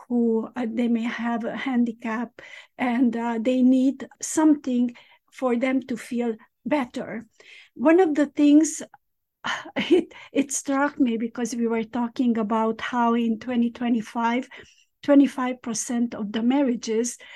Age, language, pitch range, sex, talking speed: 50-69, English, 235-290 Hz, female, 130 wpm